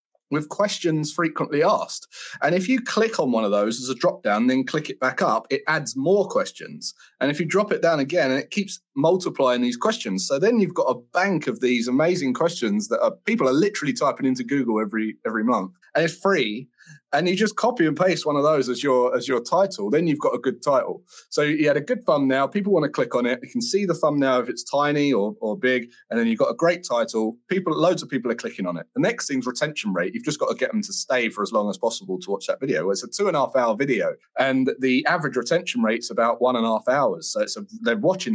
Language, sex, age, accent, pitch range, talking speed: English, male, 30-49, British, 130-205 Hz, 260 wpm